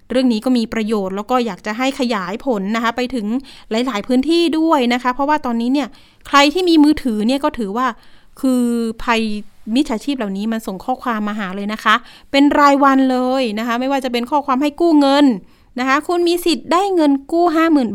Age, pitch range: 30-49, 215-275 Hz